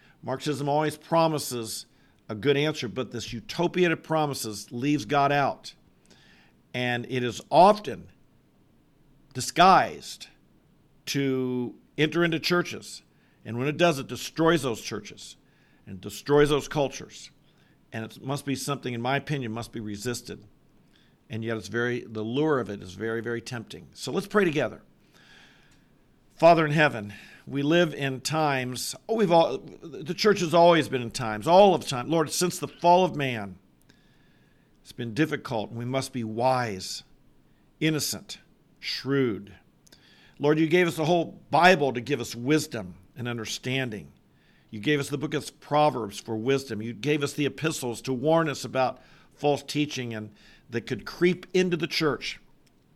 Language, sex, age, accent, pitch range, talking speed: English, male, 50-69, American, 120-155 Hz, 155 wpm